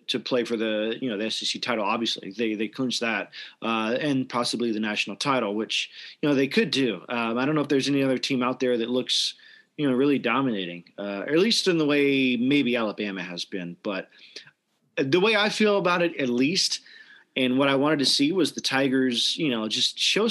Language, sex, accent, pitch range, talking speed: English, male, American, 120-150 Hz, 220 wpm